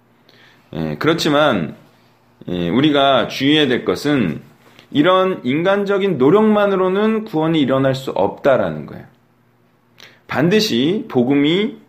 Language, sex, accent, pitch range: Korean, male, native, 125-200 Hz